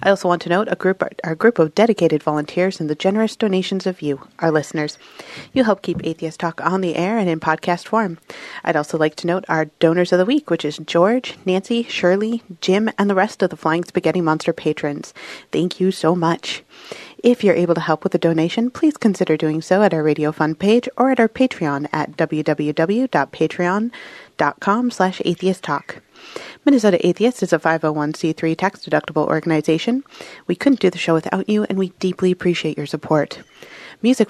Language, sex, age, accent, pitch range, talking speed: English, female, 30-49, American, 160-200 Hz, 185 wpm